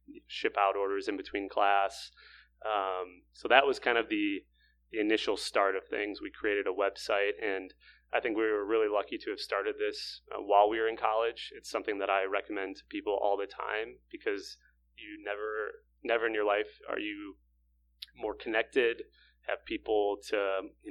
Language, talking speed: English, 180 wpm